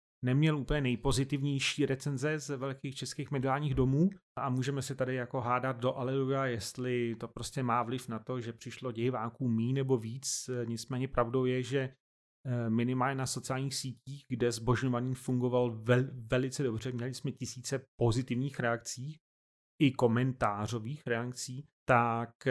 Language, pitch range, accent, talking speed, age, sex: Czech, 120-135 Hz, native, 140 wpm, 30-49, male